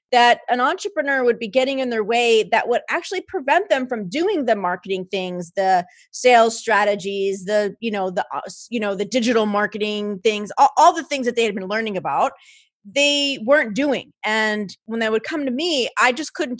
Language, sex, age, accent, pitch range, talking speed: English, female, 30-49, American, 190-270 Hz, 200 wpm